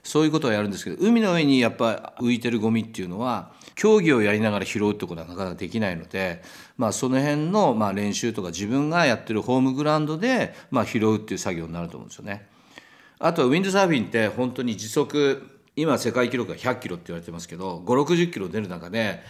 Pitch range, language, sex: 100-155 Hz, Japanese, male